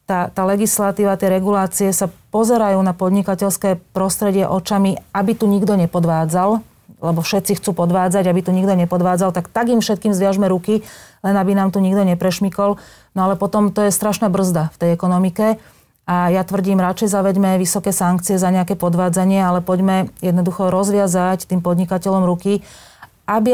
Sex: female